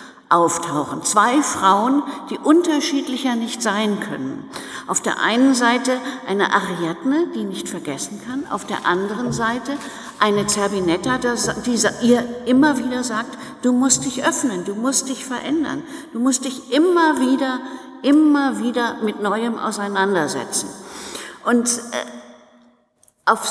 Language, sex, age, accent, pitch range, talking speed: German, female, 60-79, German, 210-275 Hz, 130 wpm